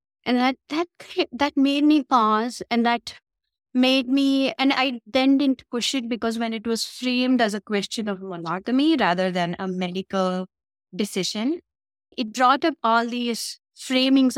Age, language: 20-39, English